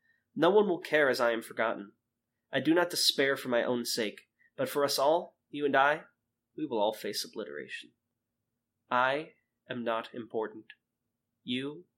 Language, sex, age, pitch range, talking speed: English, male, 30-49, 115-140 Hz, 165 wpm